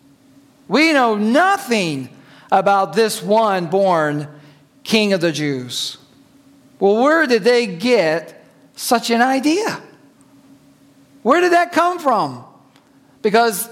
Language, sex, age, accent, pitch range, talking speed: English, male, 50-69, American, 195-265 Hz, 110 wpm